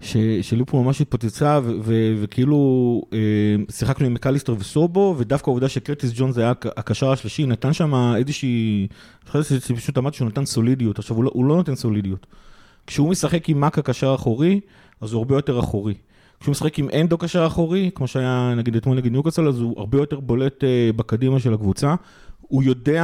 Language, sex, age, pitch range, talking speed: Hebrew, male, 30-49, 115-145 Hz, 170 wpm